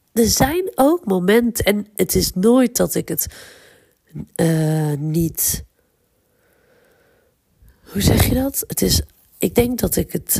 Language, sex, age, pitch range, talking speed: Dutch, female, 40-59, 160-230 Hz, 140 wpm